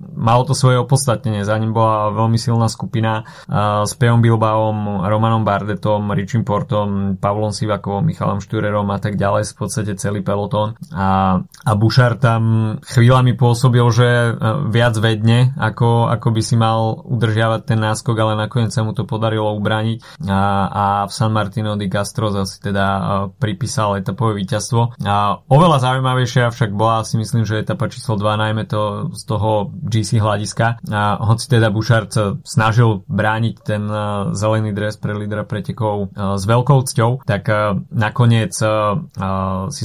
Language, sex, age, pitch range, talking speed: Slovak, male, 20-39, 100-115 Hz, 150 wpm